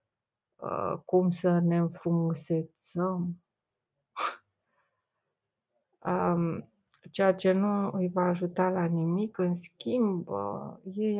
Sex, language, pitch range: female, Romanian, 170-190 Hz